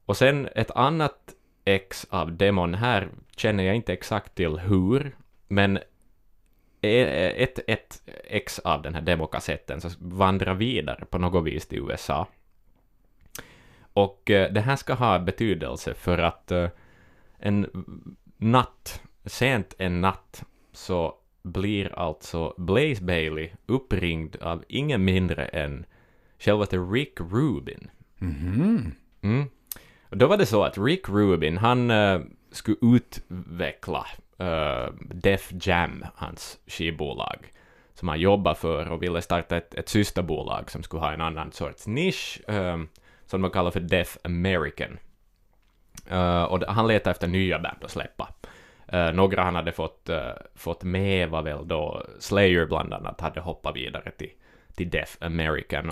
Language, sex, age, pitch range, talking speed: Swedish, male, 20-39, 85-100 Hz, 140 wpm